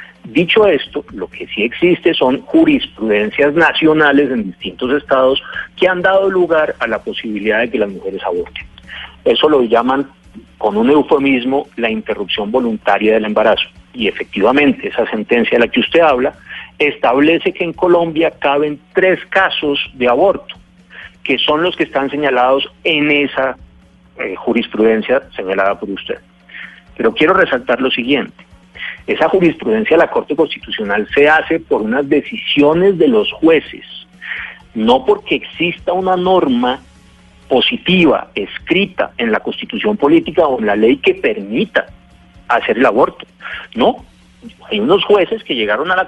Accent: Colombian